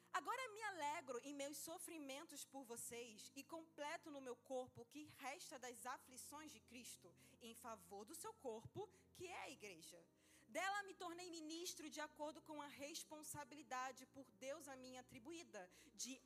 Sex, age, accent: female, 20-39, Brazilian